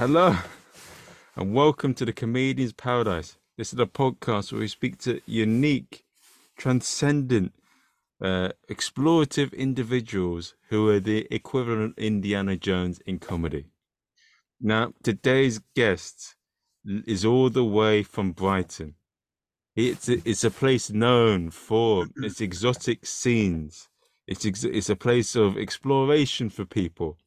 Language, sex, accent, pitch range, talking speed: English, male, British, 95-120 Hz, 120 wpm